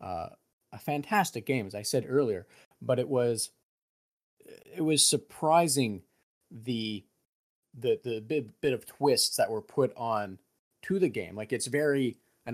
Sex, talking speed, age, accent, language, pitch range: male, 155 wpm, 30-49, American, English, 105-135 Hz